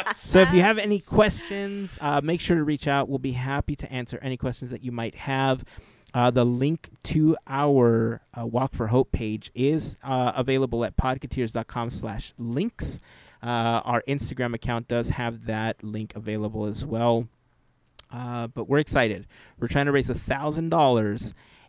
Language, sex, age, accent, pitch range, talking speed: English, male, 30-49, American, 115-135 Hz, 165 wpm